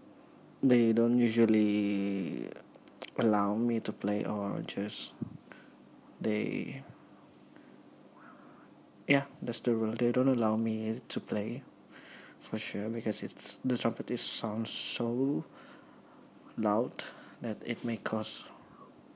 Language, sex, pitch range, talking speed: English, male, 110-125 Hz, 105 wpm